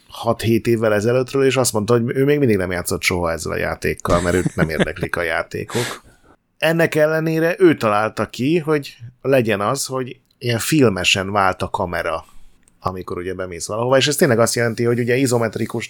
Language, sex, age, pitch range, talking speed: Hungarian, male, 30-49, 100-125 Hz, 180 wpm